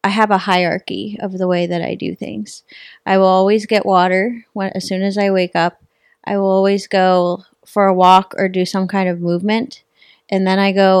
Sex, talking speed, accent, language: female, 215 wpm, American, English